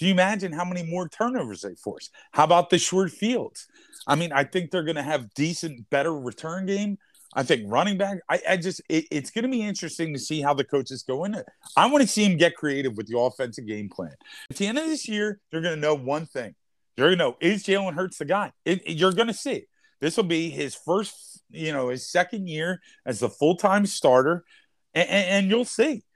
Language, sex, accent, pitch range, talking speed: English, male, American, 145-200 Hz, 240 wpm